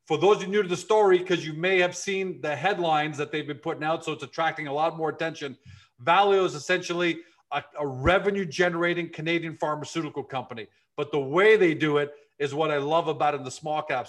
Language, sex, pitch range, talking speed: English, male, 150-180 Hz, 215 wpm